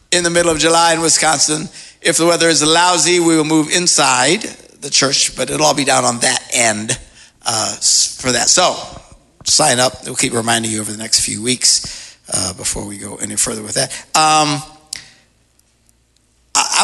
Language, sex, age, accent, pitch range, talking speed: English, male, 60-79, American, 115-160 Hz, 180 wpm